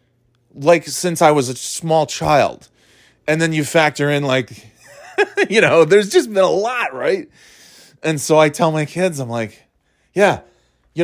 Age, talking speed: 20-39, 170 wpm